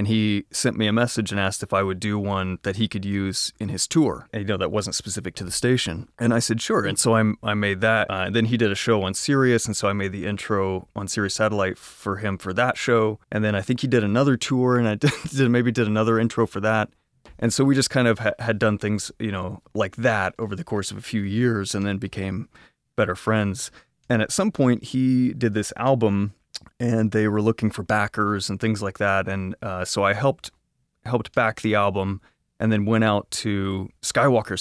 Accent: American